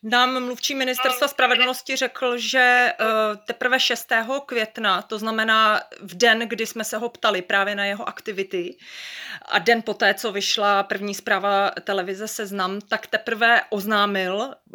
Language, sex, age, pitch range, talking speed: Czech, female, 30-49, 185-225 Hz, 140 wpm